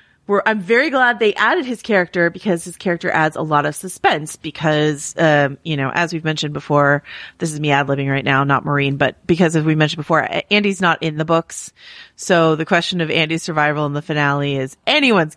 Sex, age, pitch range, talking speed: female, 30-49, 155-195 Hz, 215 wpm